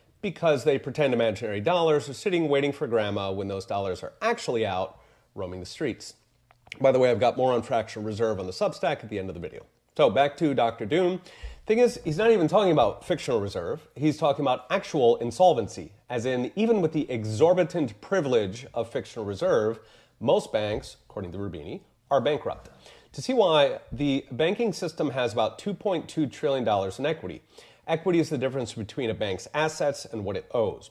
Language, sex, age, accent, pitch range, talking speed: English, male, 30-49, American, 110-165 Hz, 190 wpm